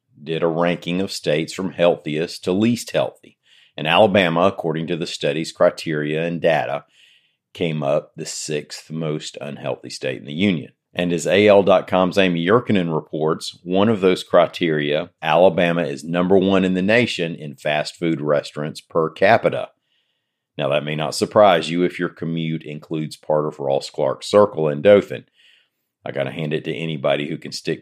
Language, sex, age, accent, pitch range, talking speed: English, male, 40-59, American, 75-90 Hz, 170 wpm